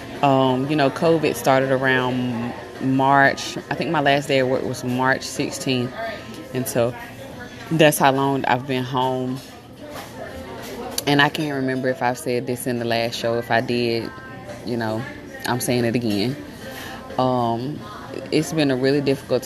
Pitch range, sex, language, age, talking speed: 120-135 Hz, female, English, 20-39, 160 wpm